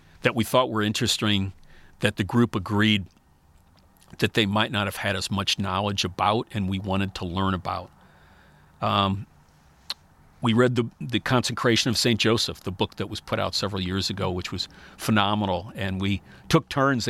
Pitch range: 90-110 Hz